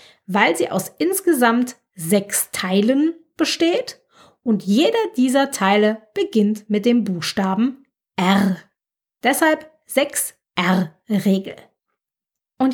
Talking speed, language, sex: 90 wpm, German, female